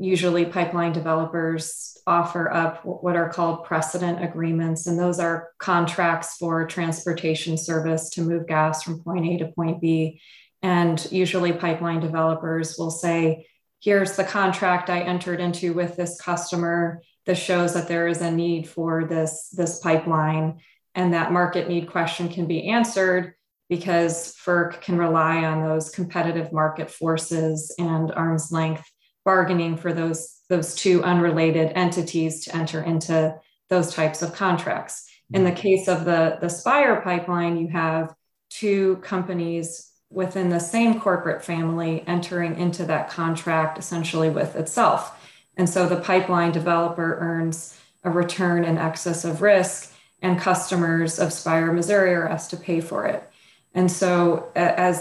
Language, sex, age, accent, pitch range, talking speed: English, female, 20-39, American, 165-180 Hz, 150 wpm